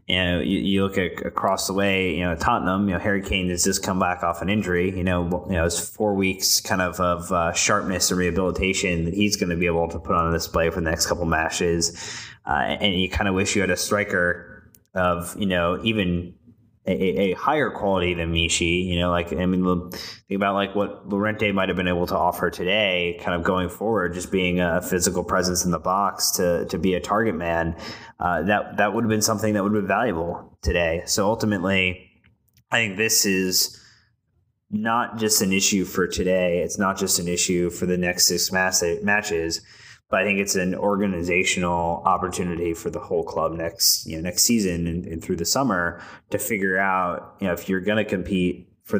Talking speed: 215 wpm